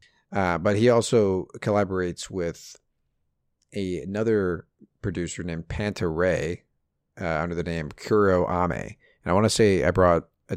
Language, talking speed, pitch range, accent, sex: English, 150 wpm, 80-105 Hz, American, male